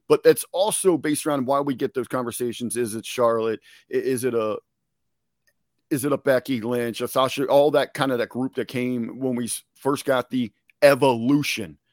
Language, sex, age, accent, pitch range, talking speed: English, male, 40-59, American, 120-155 Hz, 185 wpm